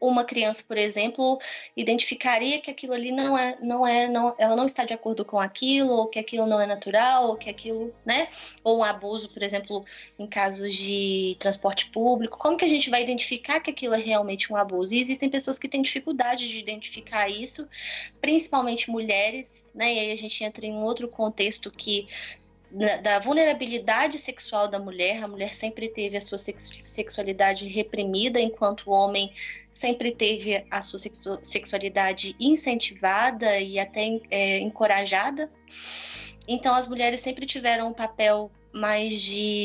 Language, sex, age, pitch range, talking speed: Portuguese, female, 20-39, 205-250 Hz, 165 wpm